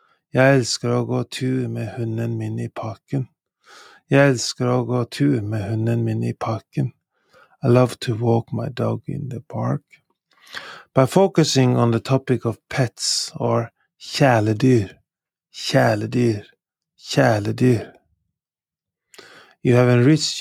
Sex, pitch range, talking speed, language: male, 115-130 Hz, 125 wpm, English